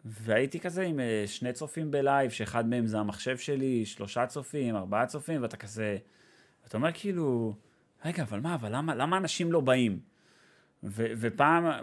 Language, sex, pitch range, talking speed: Hebrew, male, 120-155 Hz, 155 wpm